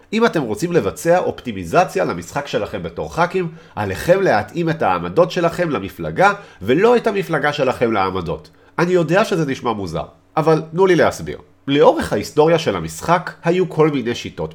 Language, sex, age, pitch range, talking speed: Hebrew, male, 40-59, 105-175 Hz, 155 wpm